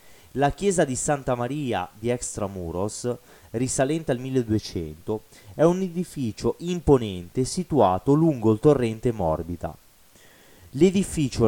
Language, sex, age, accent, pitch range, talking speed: Italian, male, 30-49, native, 100-150 Hz, 105 wpm